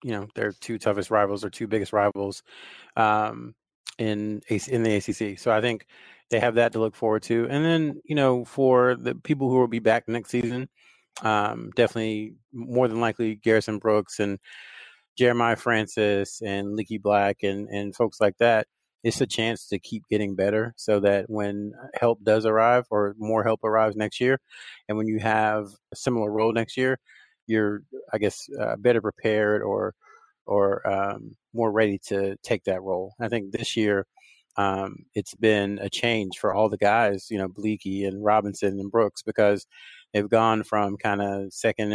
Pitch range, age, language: 100-115 Hz, 30-49, English